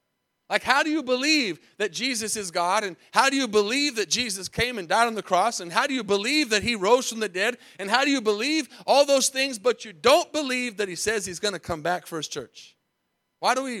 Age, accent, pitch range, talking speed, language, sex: 30-49, American, 165-230 Hz, 255 wpm, English, male